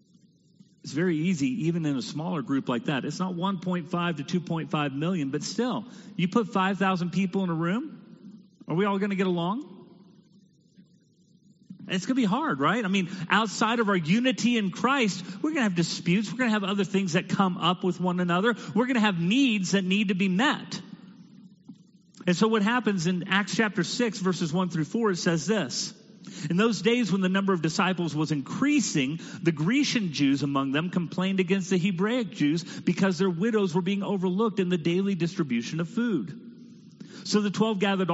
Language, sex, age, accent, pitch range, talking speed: English, male, 40-59, American, 170-210 Hz, 195 wpm